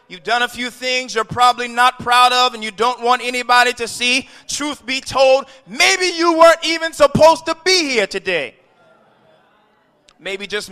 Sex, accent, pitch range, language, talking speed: male, American, 210-275 Hz, English, 175 wpm